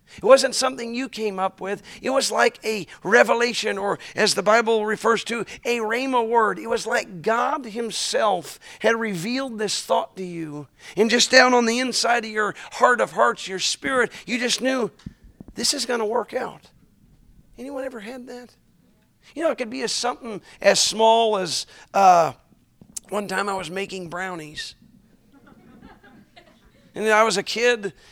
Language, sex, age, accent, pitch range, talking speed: English, male, 50-69, American, 185-235 Hz, 170 wpm